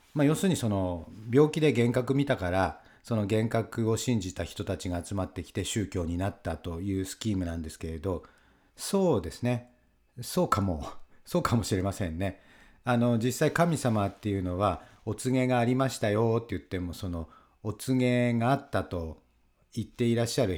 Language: English